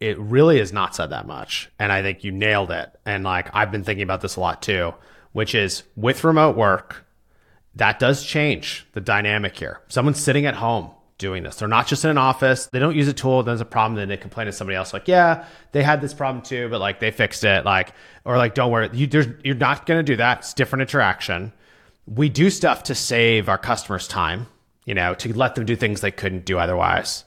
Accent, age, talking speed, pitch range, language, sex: American, 30-49, 230 wpm, 100-135 Hz, English, male